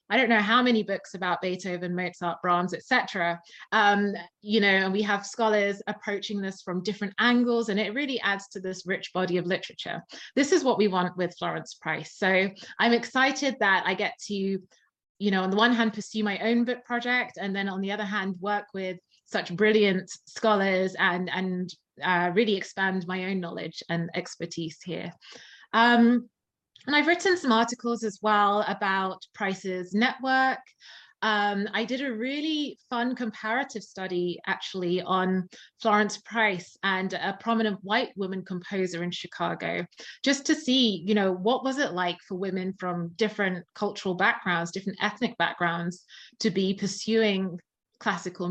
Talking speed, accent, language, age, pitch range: 165 wpm, British, English, 20-39, 185-230 Hz